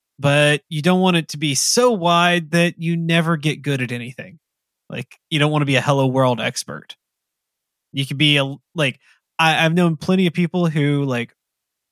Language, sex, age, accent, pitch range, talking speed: English, male, 20-39, American, 130-165 Hz, 195 wpm